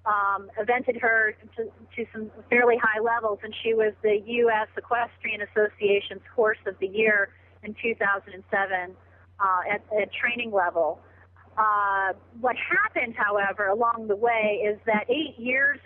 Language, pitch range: English, 195-225 Hz